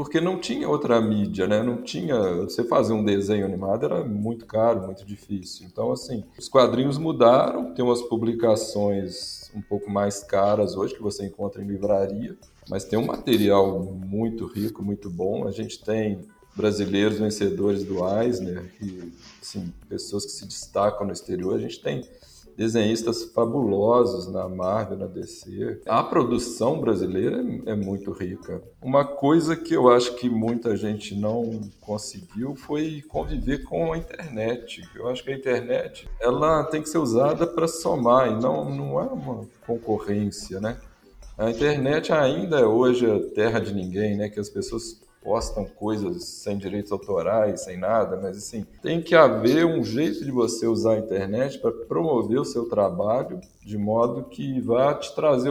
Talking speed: 160 wpm